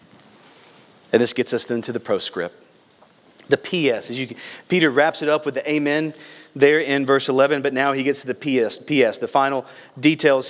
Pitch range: 130-150 Hz